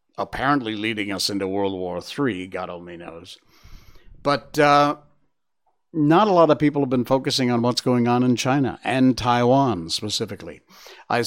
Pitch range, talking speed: 110-150 Hz, 160 wpm